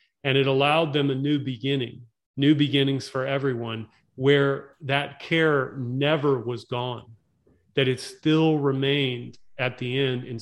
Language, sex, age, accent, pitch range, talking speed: English, male, 30-49, American, 125-155 Hz, 145 wpm